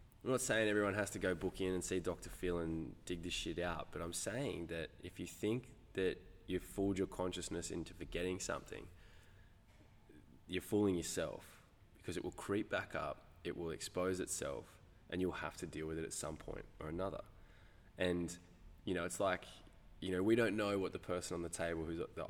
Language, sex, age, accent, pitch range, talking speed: English, male, 20-39, Australian, 85-100 Hz, 205 wpm